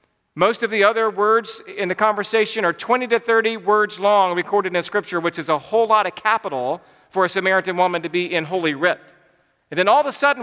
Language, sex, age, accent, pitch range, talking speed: English, male, 40-59, American, 155-185 Hz, 225 wpm